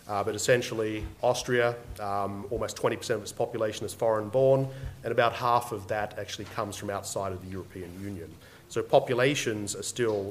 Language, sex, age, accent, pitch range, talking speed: English, male, 30-49, Australian, 110-140 Hz, 170 wpm